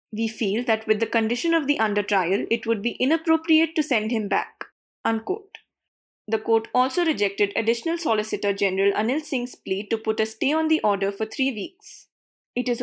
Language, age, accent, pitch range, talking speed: English, 20-39, Indian, 210-275 Hz, 190 wpm